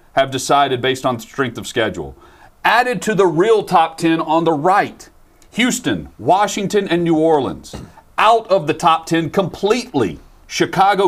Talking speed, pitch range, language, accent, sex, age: 150 wpm, 115-175 Hz, English, American, male, 40-59